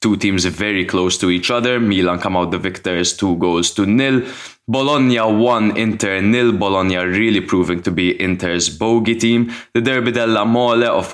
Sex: male